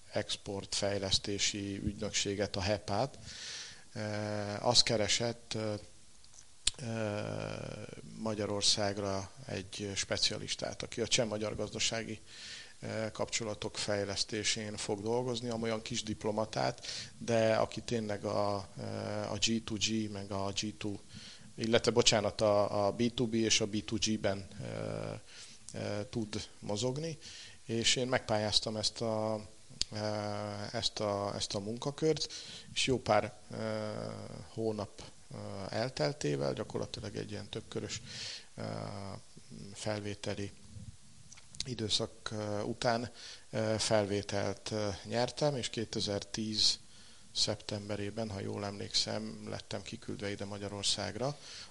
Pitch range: 105-115 Hz